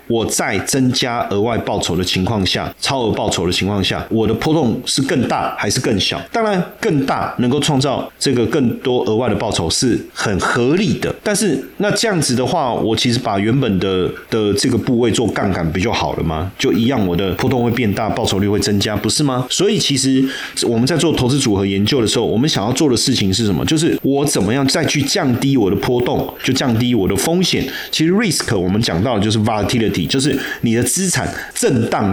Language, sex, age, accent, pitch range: Chinese, male, 30-49, native, 100-140 Hz